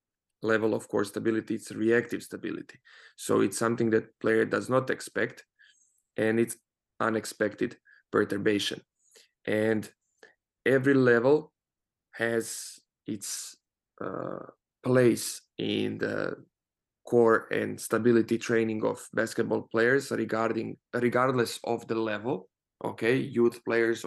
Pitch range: 110-120 Hz